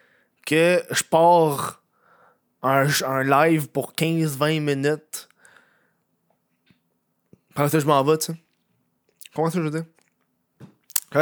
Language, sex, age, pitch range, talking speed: French, male, 20-39, 135-185 Hz, 110 wpm